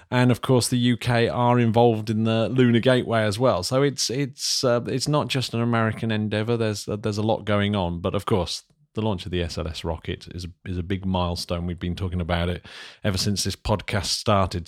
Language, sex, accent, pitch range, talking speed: English, male, British, 100-125 Hz, 220 wpm